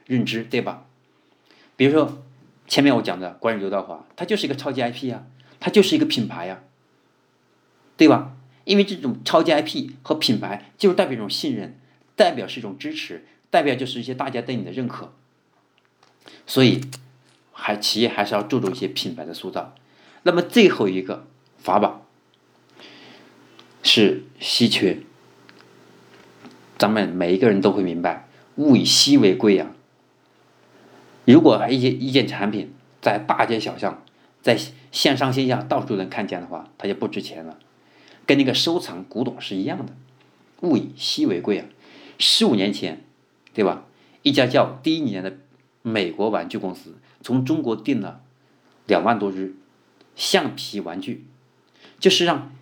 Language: Chinese